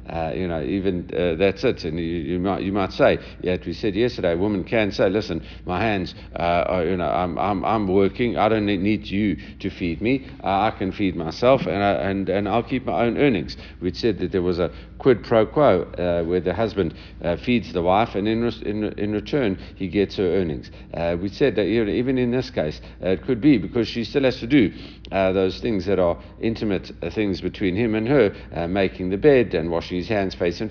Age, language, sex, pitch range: 60-79, English, male, 90-105 Hz